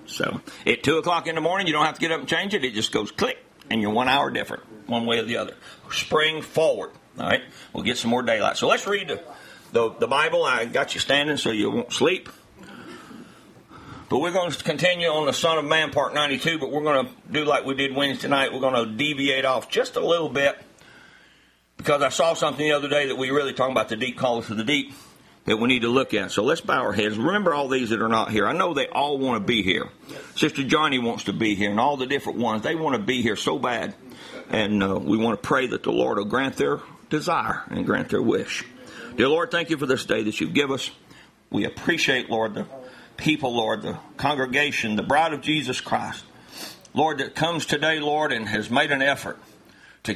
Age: 60-79